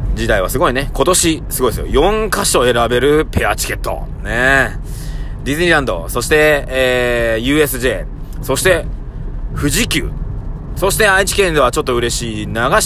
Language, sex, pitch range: Japanese, male, 110-155 Hz